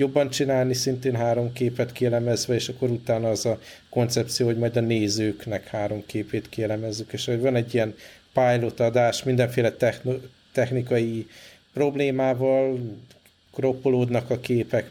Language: Hungarian